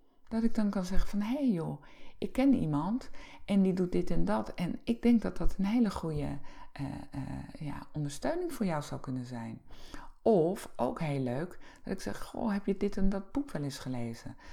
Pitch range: 145-230 Hz